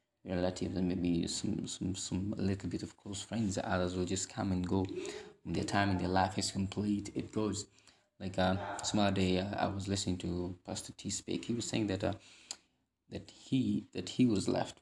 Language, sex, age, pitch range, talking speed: English, male, 20-39, 90-105 Hz, 210 wpm